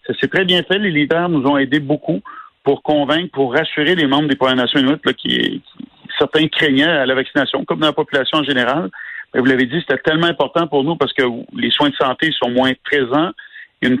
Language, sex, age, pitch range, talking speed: French, male, 50-69, 130-155 Hz, 235 wpm